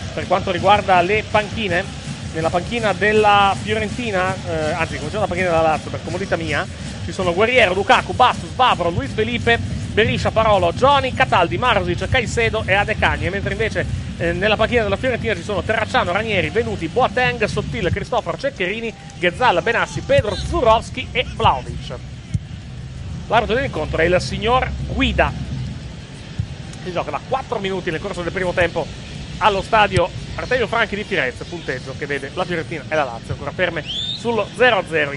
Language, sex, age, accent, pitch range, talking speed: Italian, male, 30-49, native, 155-195 Hz, 160 wpm